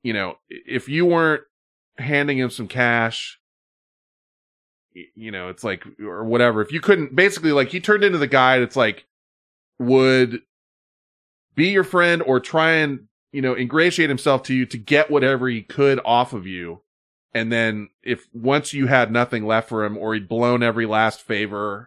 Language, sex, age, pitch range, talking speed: English, male, 20-39, 100-135 Hz, 175 wpm